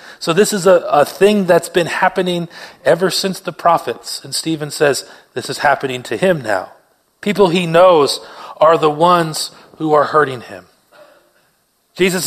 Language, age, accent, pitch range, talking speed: English, 30-49, American, 140-185 Hz, 160 wpm